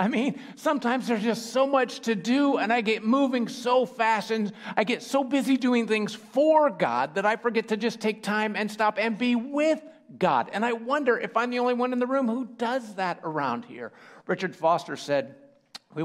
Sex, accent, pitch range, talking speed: male, American, 140-220 Hz, 215 wpm